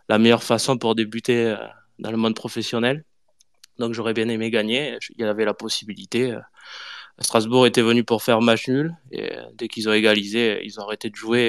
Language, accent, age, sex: French, French, 20-39, male